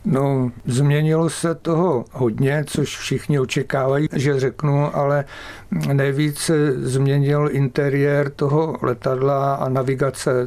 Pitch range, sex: 125-140 Hz, male